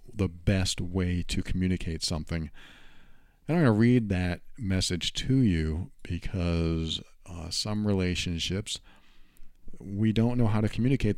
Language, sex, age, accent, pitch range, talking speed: English, male, 50-69, American, 85-105 Hz, 135 wpm